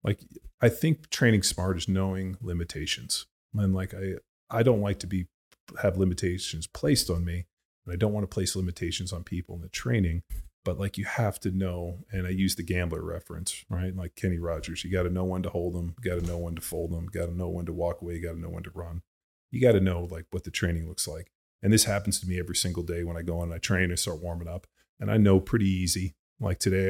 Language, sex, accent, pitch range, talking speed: English, male, American, 85-95 Hz, 255 wpm